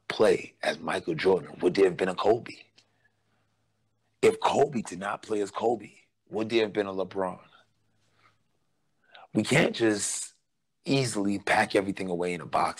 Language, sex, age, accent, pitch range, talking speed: English, male, 30-49, American, 100-115 Hz, 155 wpm